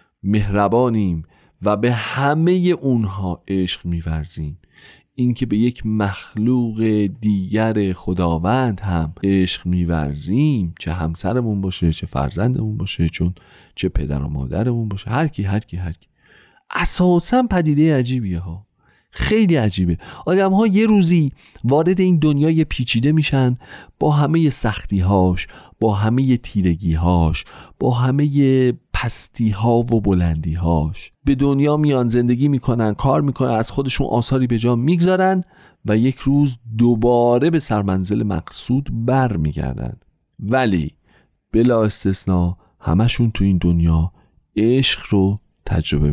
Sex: male